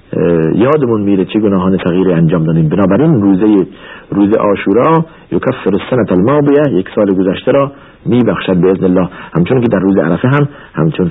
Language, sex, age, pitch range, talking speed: Persian, male, 50-69, 95-140 Hz, 160 wpm